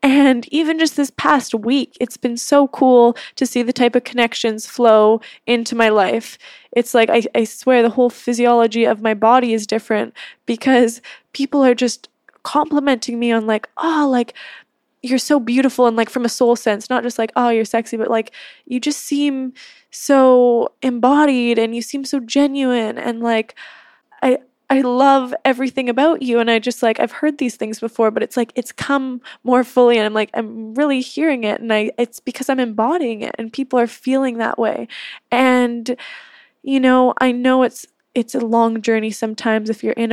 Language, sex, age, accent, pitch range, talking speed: English, female, 10-29, American, 225-260 Hz, 190 wpm